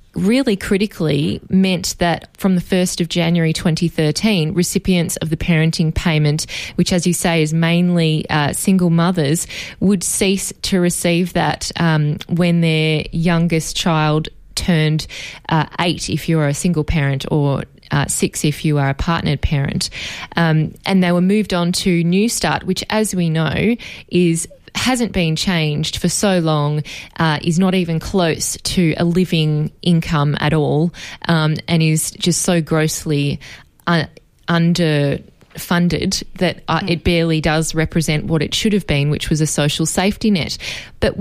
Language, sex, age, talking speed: English, female, 20-39, 155 wpm